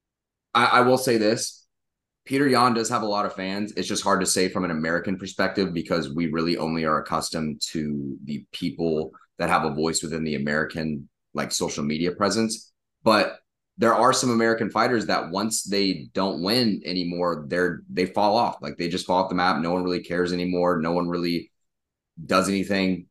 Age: 30-49